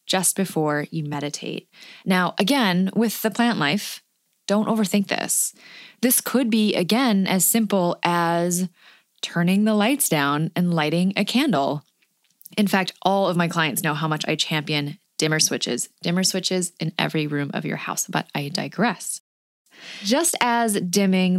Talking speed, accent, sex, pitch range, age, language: 155 wpm, American, female, 160-210 Hz, 20-39, English